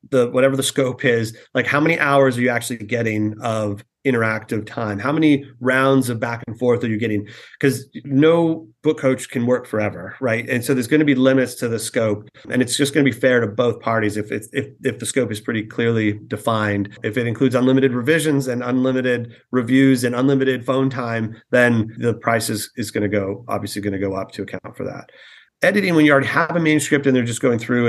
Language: English